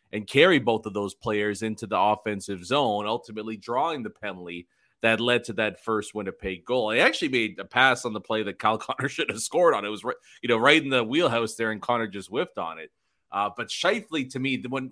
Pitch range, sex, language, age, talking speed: 115-145 Hz, male, English, 30-49, 235 wpm